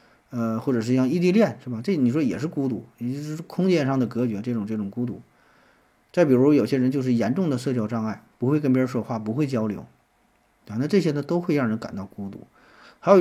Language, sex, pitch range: Chinese, male, 115-140 Hz